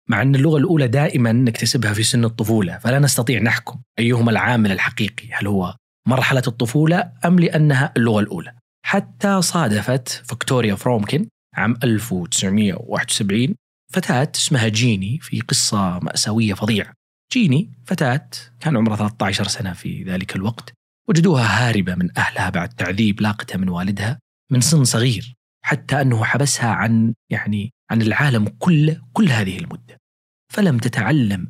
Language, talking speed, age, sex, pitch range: Arabic, 135 wpm, 30-49, male, 105-135 Hz